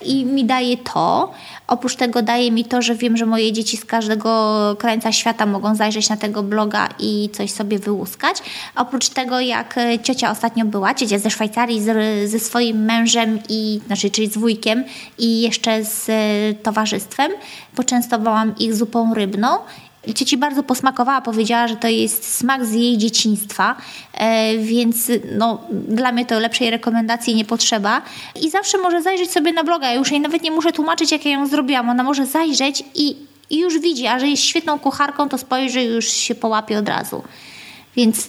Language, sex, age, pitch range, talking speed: Polish, female, 20-39, 220-255 Hz, 170 wpm